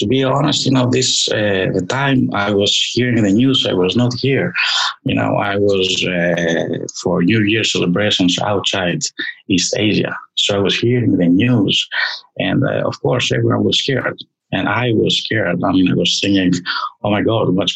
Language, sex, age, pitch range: English, male, 50-69, 95-125 Hz